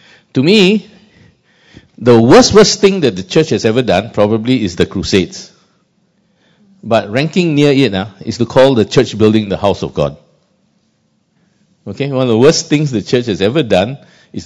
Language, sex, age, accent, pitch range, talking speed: English, male, 50-69, Malaysian, 95-135 Hz, 180 wpm